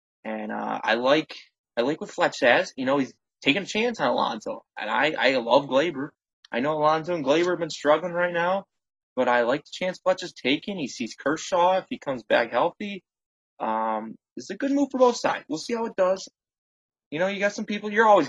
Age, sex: 20-39, male